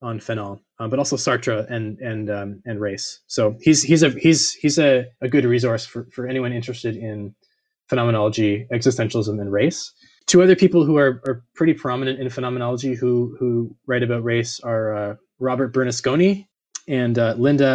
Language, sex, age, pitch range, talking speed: English, male, 20-39, 115-135 Hz, 175 wpm